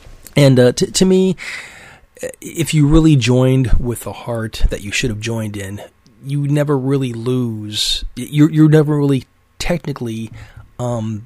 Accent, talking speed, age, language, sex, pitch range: American, 150 wpm, 40-59, English, male, 105-135 Hz